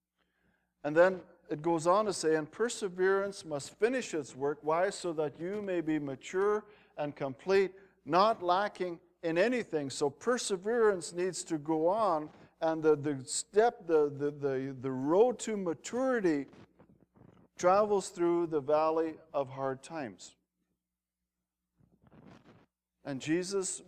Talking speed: 130 wpm